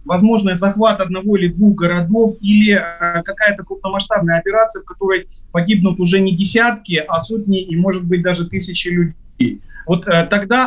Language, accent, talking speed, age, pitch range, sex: Russian, native, 160 wpm, 30-49, 180-215 Hz, male